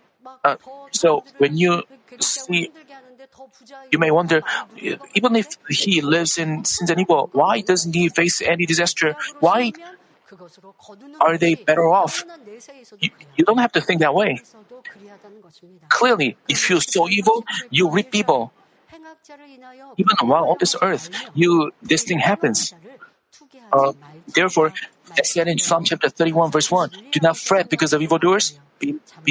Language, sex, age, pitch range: Korean, male, 50-69, 165-230 Hz